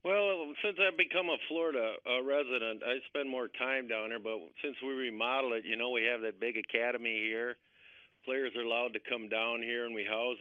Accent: American